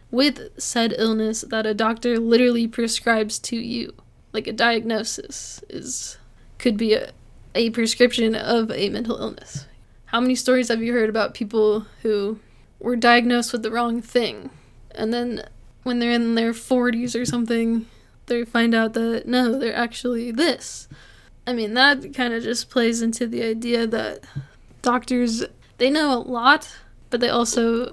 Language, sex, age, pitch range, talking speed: English, female, 10-29, 225-245 Hz, 160 wpm